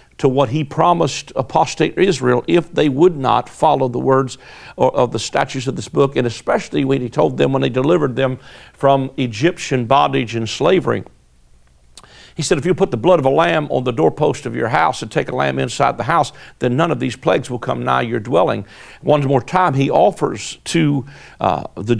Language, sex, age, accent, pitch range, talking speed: English, male, 60-79, American, 125-150 Hz, 205 wpm